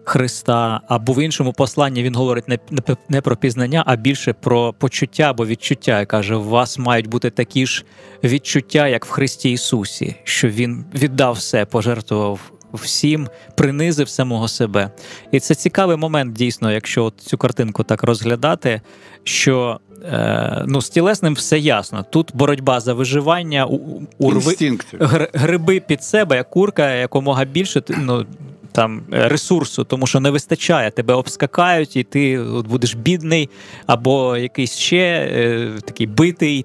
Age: 20-39